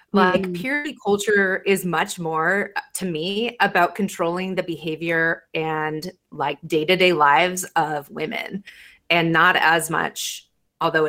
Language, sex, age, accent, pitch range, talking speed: English, female, 30-49, American, 170-205 Hz, 125 wpm